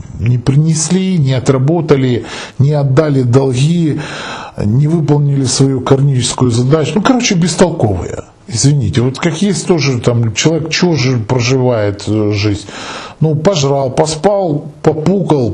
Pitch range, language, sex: 110-155 Hz, Russian, male